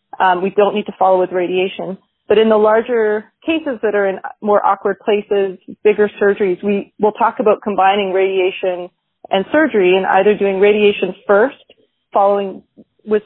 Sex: female